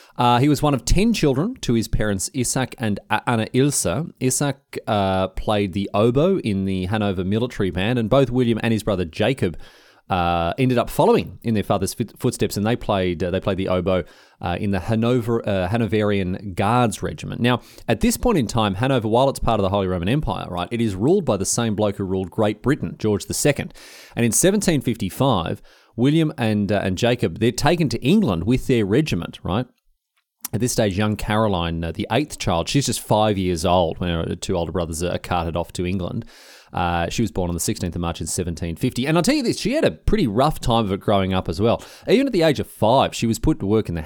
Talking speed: 225 wpm